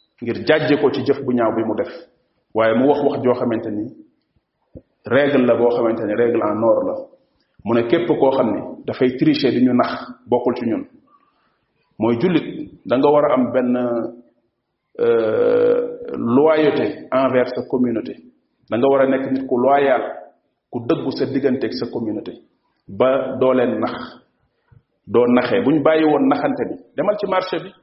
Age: 40-59